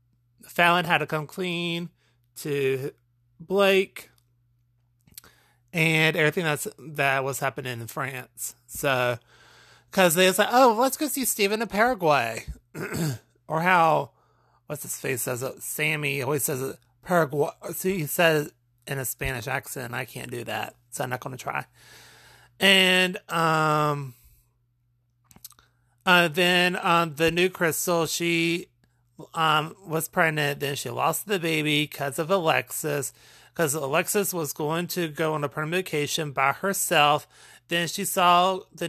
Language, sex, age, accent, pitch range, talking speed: English, male, 30-49, American, 130-170 Hz, 140 wpm